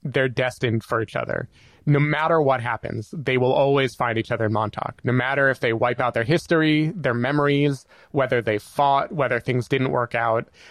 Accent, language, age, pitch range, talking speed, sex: American, English, 20-39, 120-145 Hz, 195 wpm, male